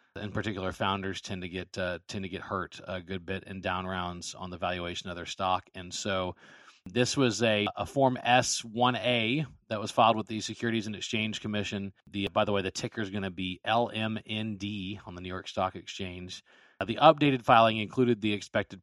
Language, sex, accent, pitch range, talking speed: English, male, American, 95-110 Hz, 205 wpm